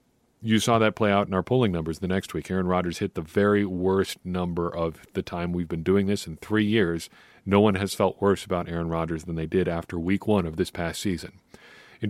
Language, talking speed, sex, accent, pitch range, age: English, 240 wpm, male, American, 90-110 Hz, 40-59